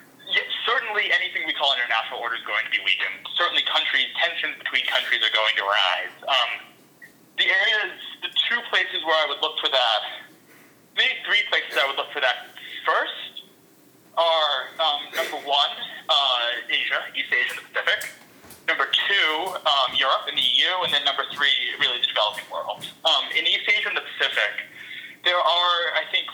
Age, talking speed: 30-49, 180 wpm